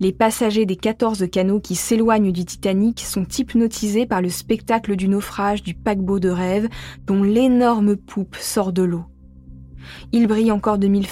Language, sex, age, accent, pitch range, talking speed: French, female, 20-39, French, 175-230 Hz, 165 wpm